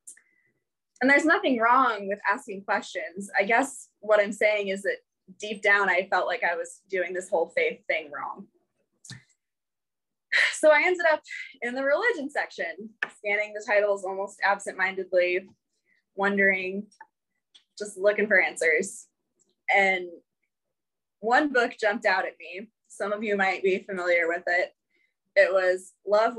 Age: 20-39